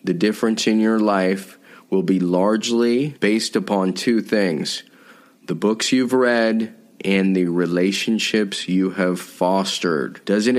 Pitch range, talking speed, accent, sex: 100-115 Hz, 130 wpm, American, male